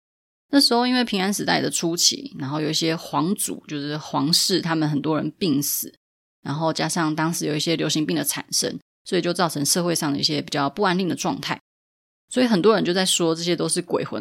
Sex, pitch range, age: female, 155-195 Hz, 20-39